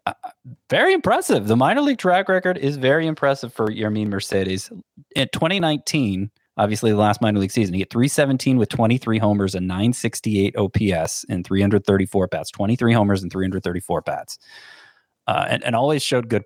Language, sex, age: English, male, 20-39